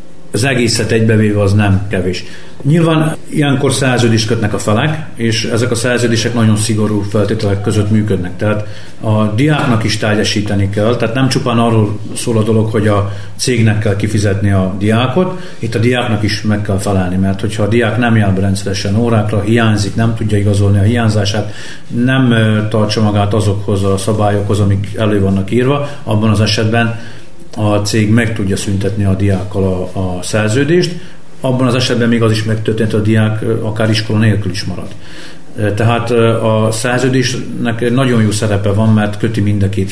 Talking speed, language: 165 wpm, Hungarian